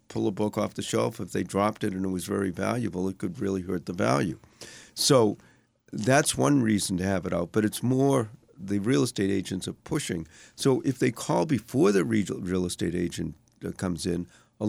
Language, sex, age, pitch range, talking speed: English, male, 50-69, 100-120 Hz, 205 wpm